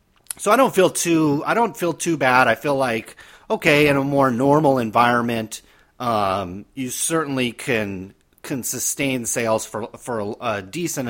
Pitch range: 115-150 Hz